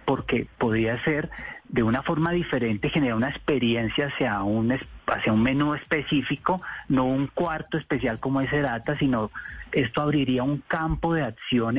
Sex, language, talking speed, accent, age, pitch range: male, Spanish, 155 wpm, Colombian, 30-49, 115-145 Hz